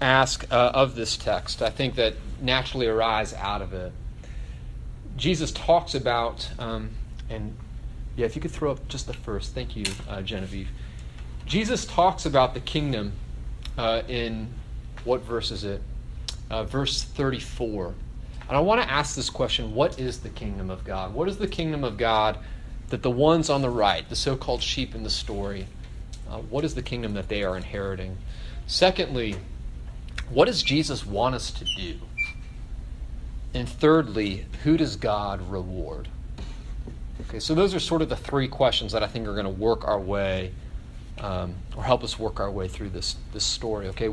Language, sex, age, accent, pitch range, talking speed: English, male, 30-49, American, 95-130 Hz, 175 wpm